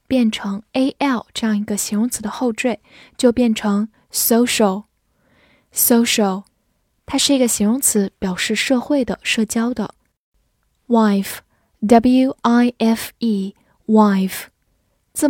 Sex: female